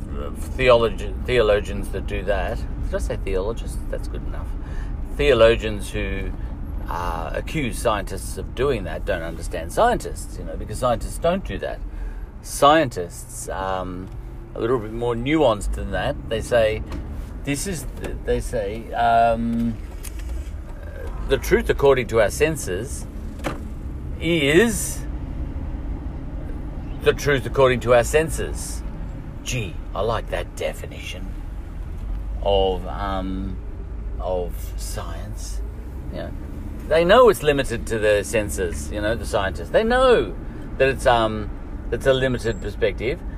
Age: 50-69